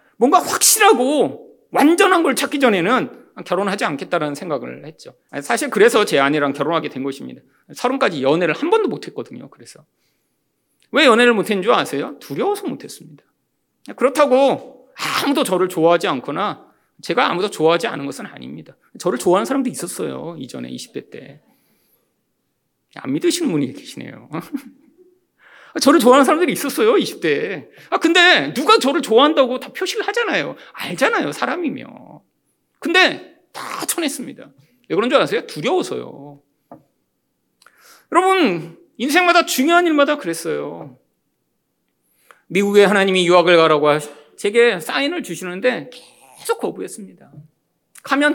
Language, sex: Korean, male